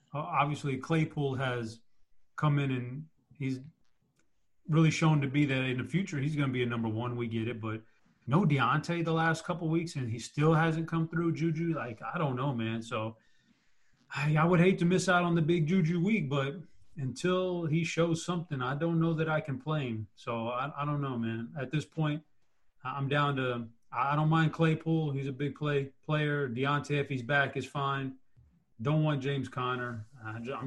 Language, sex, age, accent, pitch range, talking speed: English, male, 30-49, American, 120-155 Hz, 200 wpm